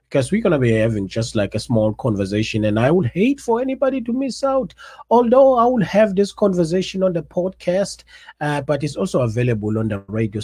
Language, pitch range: English, 120-185 Hz